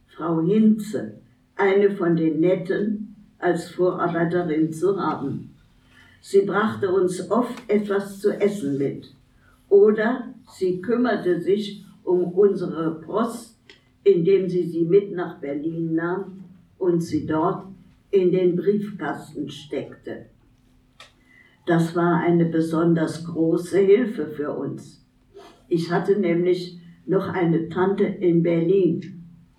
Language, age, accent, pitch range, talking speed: German, 60-79, German, 165-200 Hz, 110 wpm